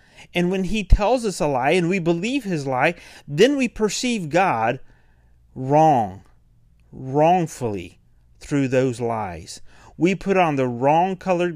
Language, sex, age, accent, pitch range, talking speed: English, male, 40-59, American, 105-145 Hz, 140 wpm